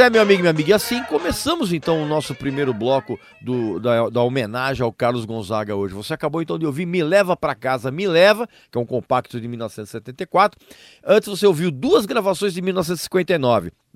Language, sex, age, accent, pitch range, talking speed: Portuguese, male, 40-59, Brazilian, 135-190 Hz, 195 wpm